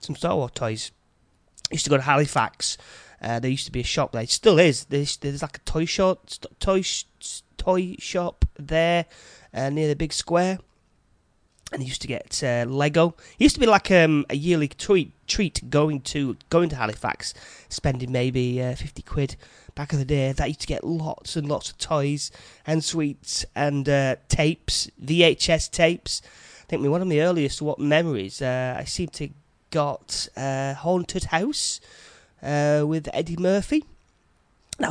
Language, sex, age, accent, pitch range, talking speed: English, male, 30-49, British, 130-165 Hz, 180 wpm